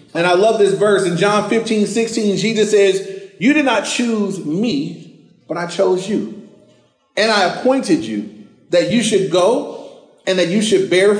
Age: 30-49